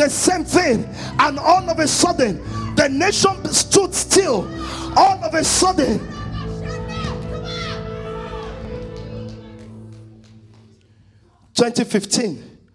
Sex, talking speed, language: male, 80 wpm, English